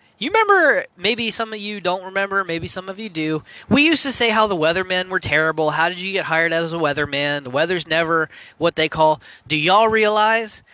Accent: American